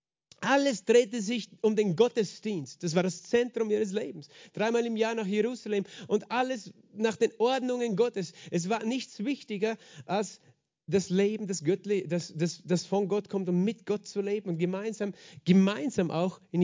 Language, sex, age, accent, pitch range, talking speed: German, male, 40-59, German, 155-205 Hz, 170 wpm